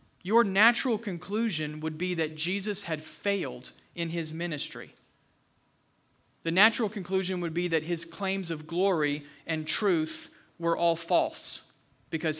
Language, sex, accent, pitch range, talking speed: English, male, American, 165-225 Hz, 135 wpm